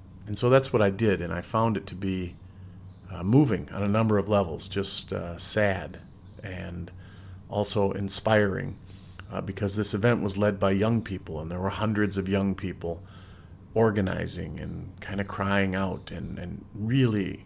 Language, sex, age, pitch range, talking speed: English, male, 40-59, 95-105 Hz, 170 wpm